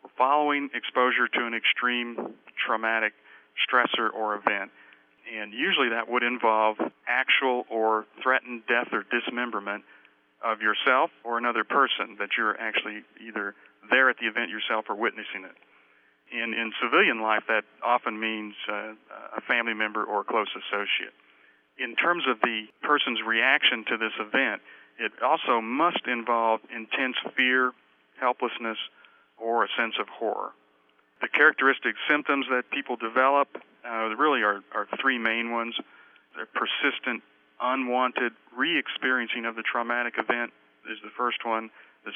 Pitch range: 110-125 Hz